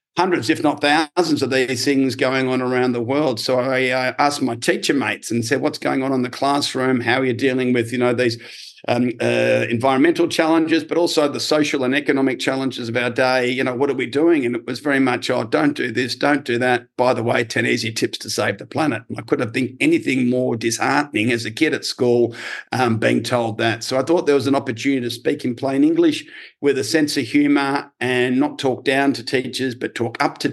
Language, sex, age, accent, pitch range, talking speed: English, male, 50-69, Australian, 120-135 Hz, 235 wpm